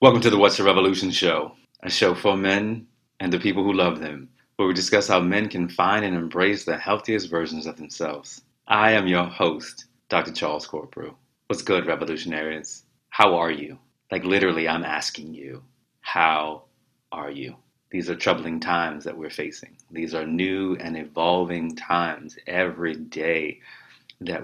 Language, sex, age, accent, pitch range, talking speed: English, male, 30-49, American, 80-95 Hz, 165 wpm